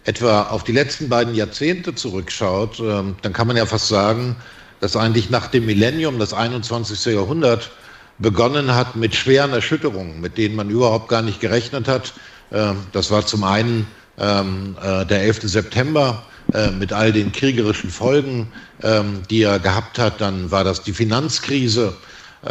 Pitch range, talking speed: 100-120 Hz, 145 wpm